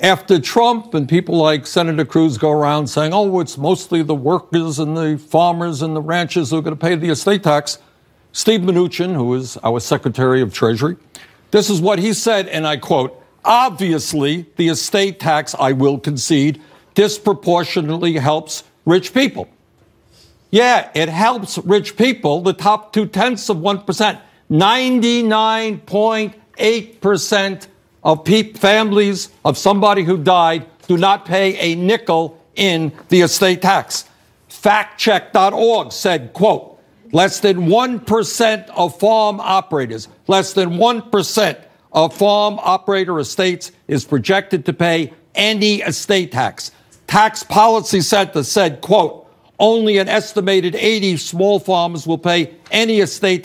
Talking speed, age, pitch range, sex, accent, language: 140 wpm, 60-79, 160-205 Hz, male, American, English